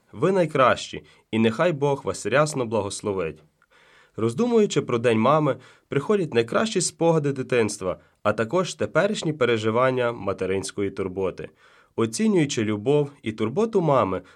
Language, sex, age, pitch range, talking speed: Ukrainian, male, 30-49, 110-155 Hz, 115 wpm